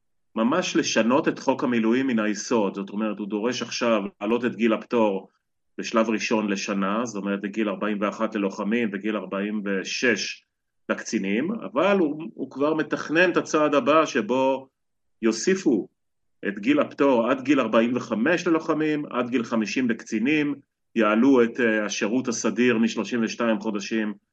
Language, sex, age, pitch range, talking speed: Hebrew, male, 30-49, 110-145 Hz, 135 wpm